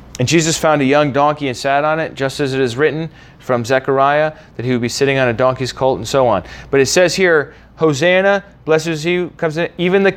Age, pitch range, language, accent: 30-49, 130-180 Hz, English, American